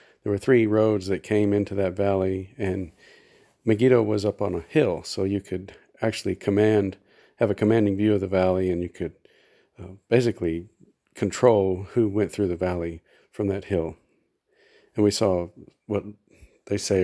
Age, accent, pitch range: 50-69, American, 95-110 Hz